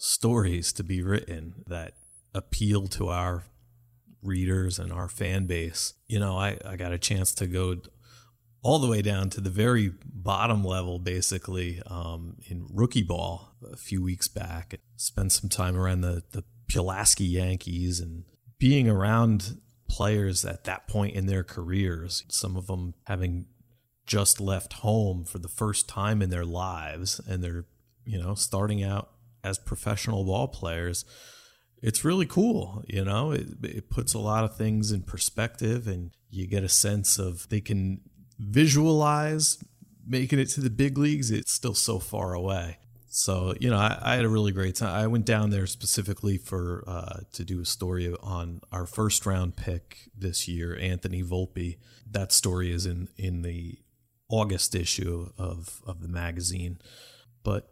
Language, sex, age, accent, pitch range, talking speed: English, male, 30-49, American, 90-115 Hz, 165 wpm